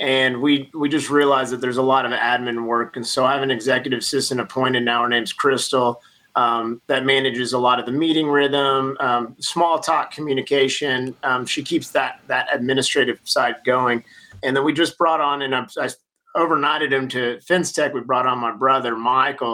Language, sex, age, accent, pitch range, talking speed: English, male, 30-49, American, 125-160 Hz, 200 wpm